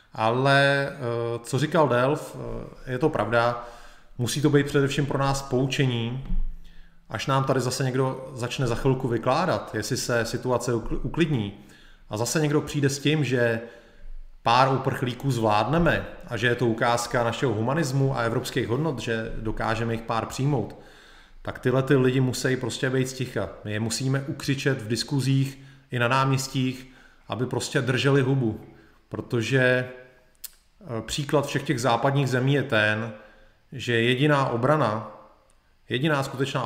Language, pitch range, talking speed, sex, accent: Czech, 115-135 Hz, 140 wpm, male, native